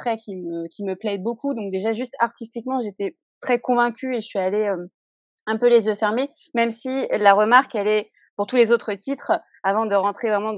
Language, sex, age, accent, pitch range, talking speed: French, female, 20-39, French, 190-245 Hz, 210 wpm